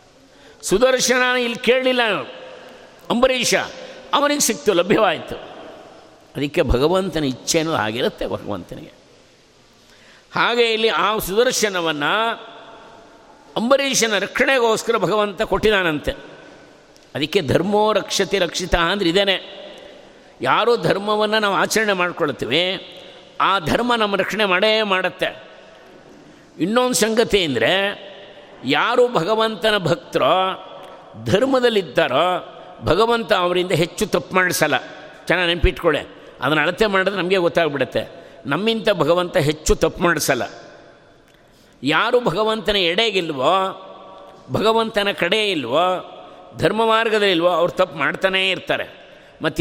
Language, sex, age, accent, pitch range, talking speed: Kannada, male, 50-69, native, 180-225 Hz, 90 wpm